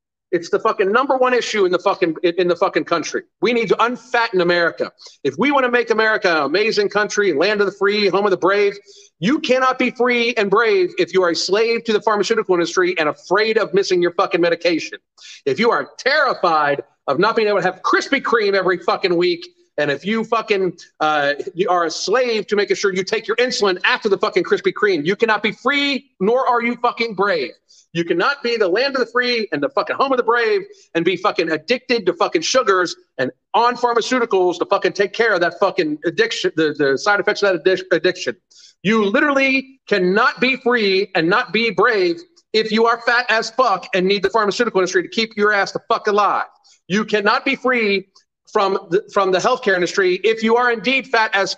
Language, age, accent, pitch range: English, 40-59, American, 190-250 Hz